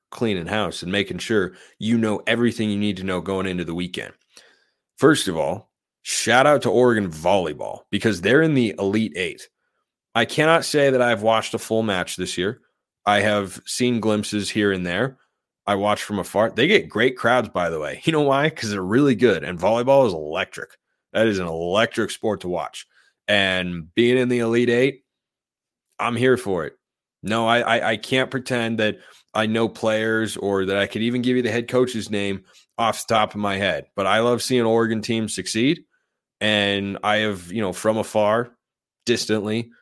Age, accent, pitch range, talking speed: 30-49, American, 100-115 Hz, 195 wpm